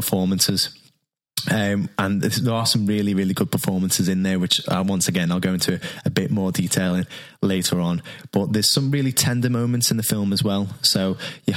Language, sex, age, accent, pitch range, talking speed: English, male, 10-29, British, 95-120 Hz, 195 wpm